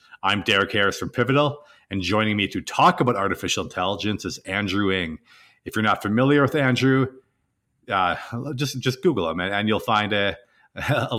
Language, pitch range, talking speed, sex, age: English, 90-115 Hz, 175 wpm, male, 40-59